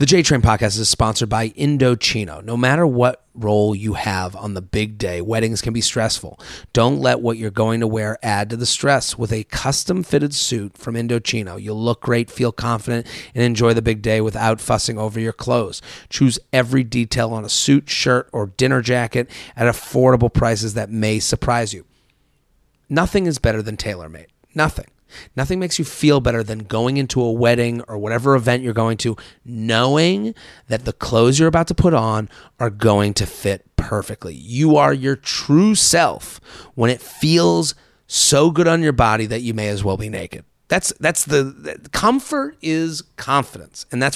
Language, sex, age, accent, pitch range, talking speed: English, male, 30-49, American, 110-130 Hz, 185 wpm